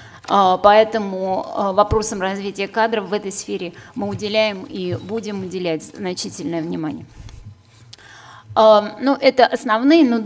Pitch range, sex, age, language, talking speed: 195-230 Hz, female, 30-49, Russian, 105 wpm